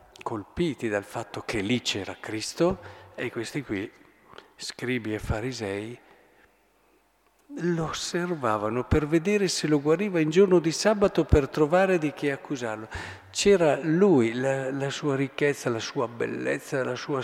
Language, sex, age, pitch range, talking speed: Italian, male, 50-69, 115-160 Hz, 140 wpm